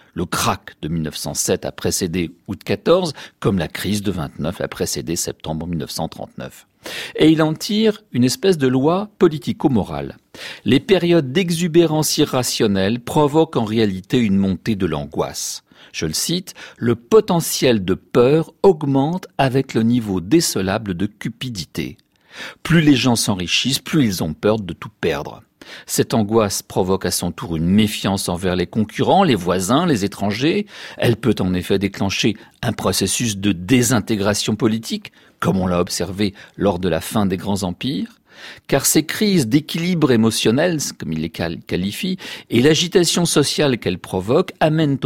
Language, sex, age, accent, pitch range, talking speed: French, male, 50-69, French, 95-155 Hz, 150 wpm